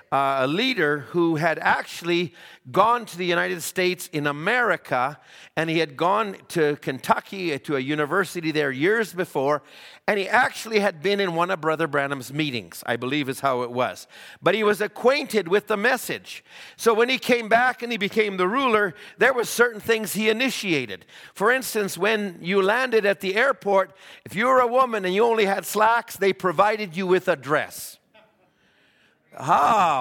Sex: male